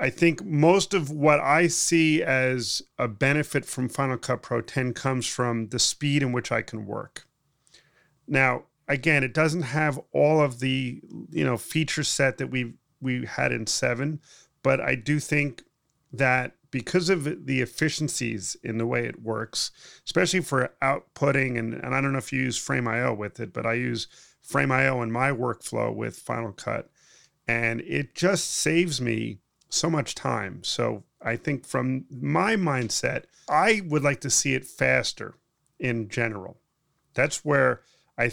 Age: 30-49